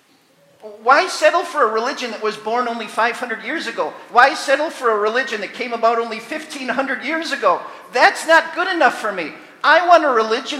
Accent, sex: American, male